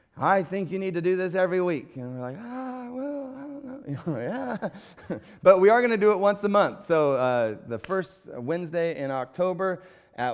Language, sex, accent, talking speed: English, male, American, 210 wpm